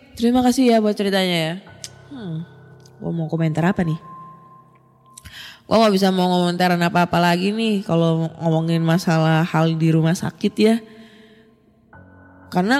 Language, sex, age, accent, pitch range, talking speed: Indonesian, female, 20-39, native, 165-210 Hz, 130 wpm